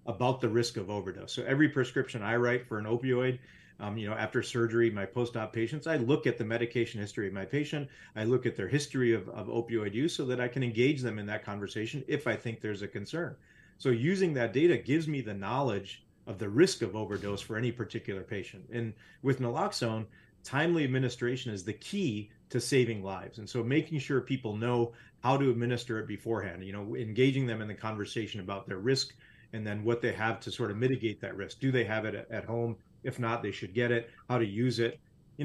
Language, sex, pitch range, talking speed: English, male, 105-130 Hz, 225 wpm